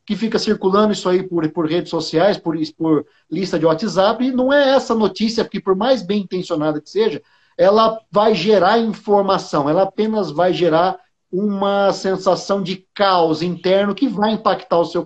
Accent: Brazilian